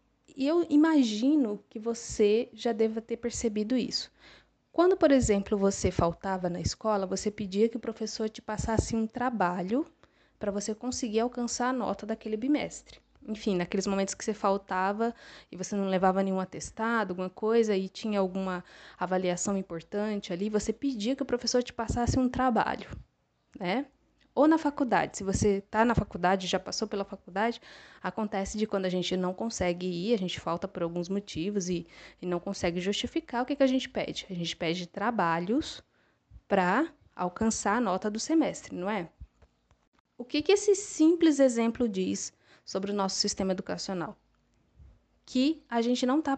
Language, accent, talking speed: Portuguese, Brazilian, 170 wpm